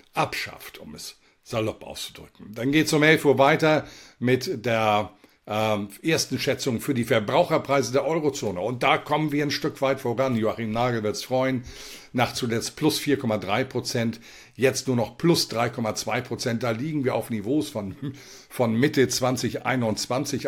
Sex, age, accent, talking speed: male, 50-69, German, 160 wpm